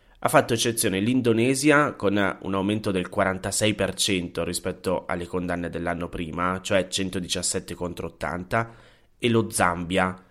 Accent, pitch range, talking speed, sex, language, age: native, 90-120 Hz, 120 wpm, male, Italian, 20-39